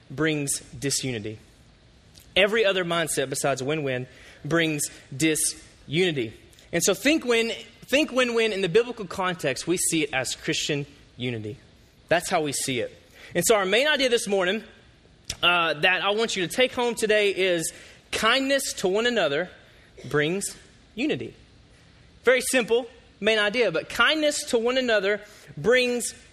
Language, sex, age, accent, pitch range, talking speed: English, male, 20-39, American, 165-230 Hz, 140 wpm